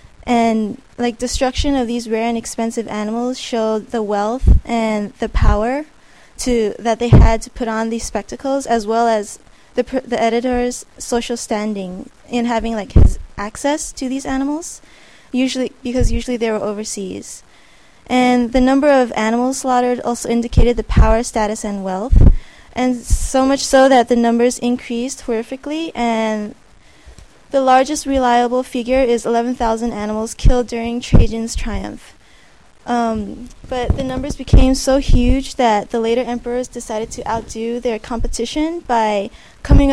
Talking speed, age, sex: 150 wpm, 20-39, female